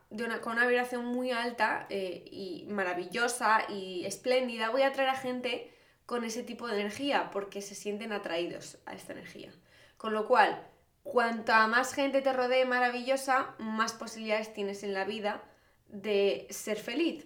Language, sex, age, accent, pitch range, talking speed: Spanish, female, 20-39, Spanish, 220-285 Hz, 155 wpm